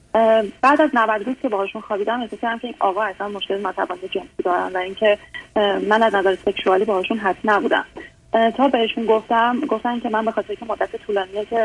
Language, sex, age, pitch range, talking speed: Persian, female, 30-49, 200-235 Hz, 190 wpm